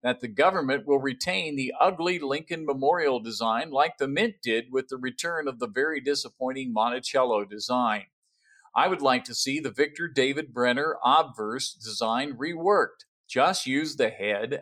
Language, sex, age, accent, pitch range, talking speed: English, male, 50-69, American, 120-150 Hz, 160 wpm